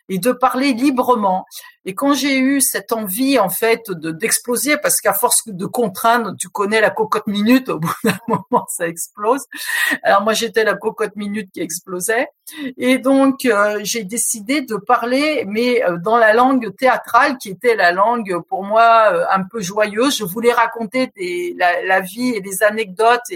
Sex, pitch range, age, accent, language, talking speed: female, 200-260 Hz, 50-69, French, French, 175 wpm